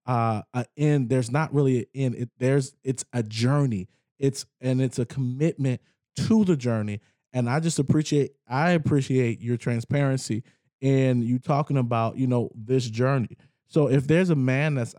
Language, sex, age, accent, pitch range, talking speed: English, male, 20-39, American, 120-145 Hz, 170 wpm